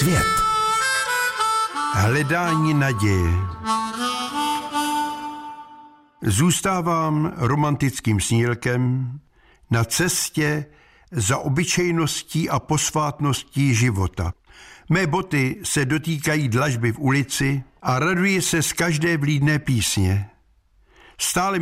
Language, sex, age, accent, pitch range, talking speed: Czech, male, 60-79, native, 125-165 Hz, 75 wpm